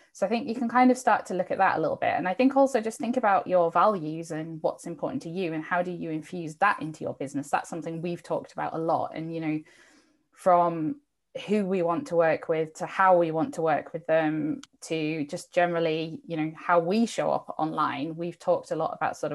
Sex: female